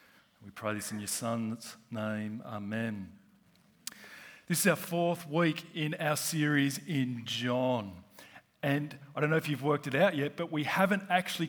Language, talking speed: English, 165 wpm